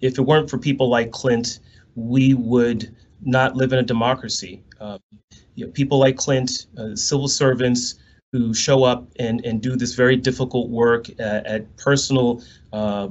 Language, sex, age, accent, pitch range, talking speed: English, male, 30-49, American, 110-135 Hz, 155 wpm